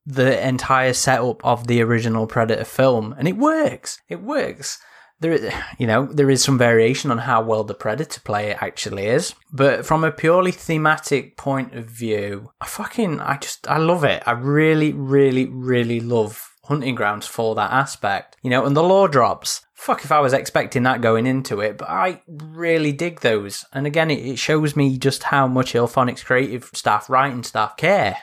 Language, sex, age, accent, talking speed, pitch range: English, male, 20-39, British, 190 wpm, 120-150 Hz